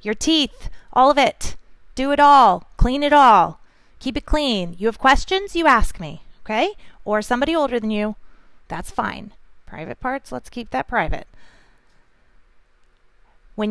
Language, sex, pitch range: English, female, 195-275 Hz